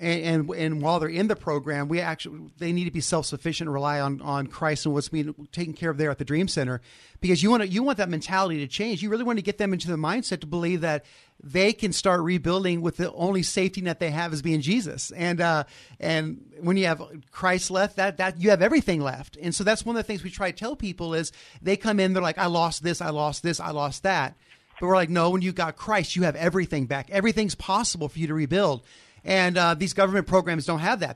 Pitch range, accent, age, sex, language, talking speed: 155-195 Hz, American, 50-69, male, English, 260 wpm